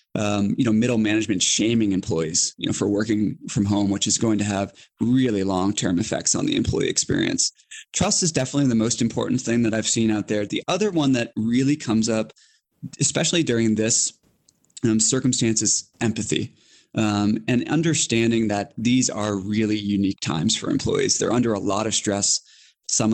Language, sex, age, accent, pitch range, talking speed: English, male, 20-39, American, 105-125 Hz, 175 wpm